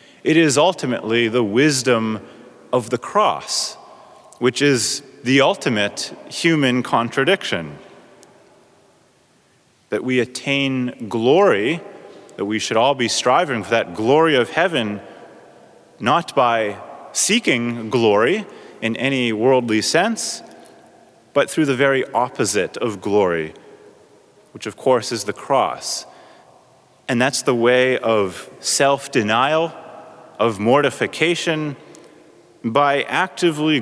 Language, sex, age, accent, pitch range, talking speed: English, male, 30-49, American, 115-160 Hz, 105 wpm